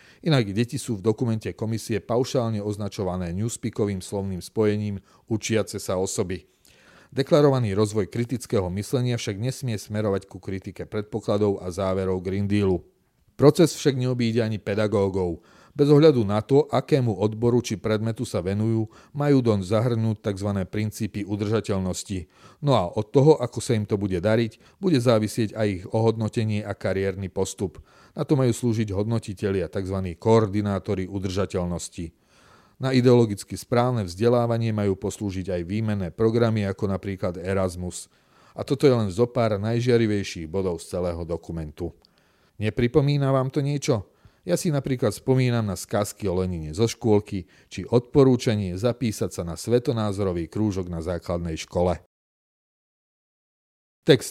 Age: 40-59